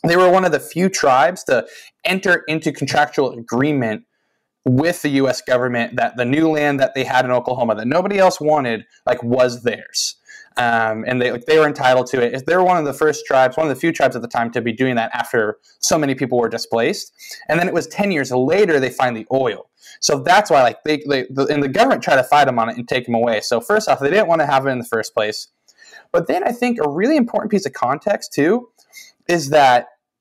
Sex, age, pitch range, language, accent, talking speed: male, 20-39, 130-170 Hz, English, American, 245 wpm